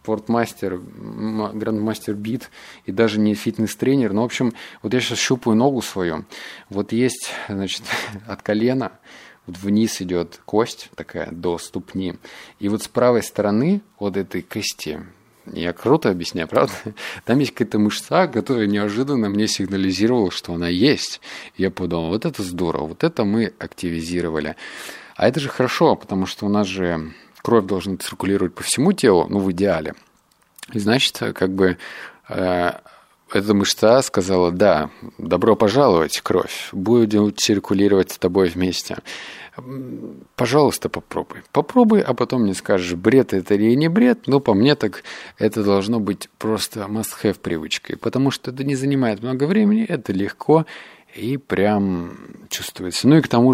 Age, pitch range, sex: 20-39, 95-120 Hz, male